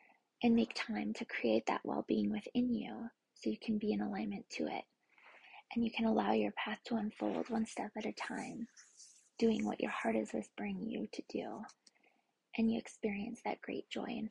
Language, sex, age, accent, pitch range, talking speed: English, female, 20-39, American, 225-250 Hz, 195 wpm